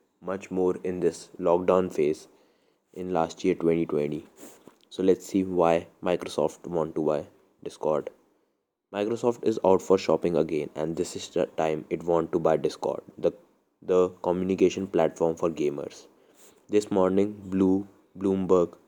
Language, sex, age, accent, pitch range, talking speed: English, male, 20-39, Indian, 85-95 Hz, 145 wpm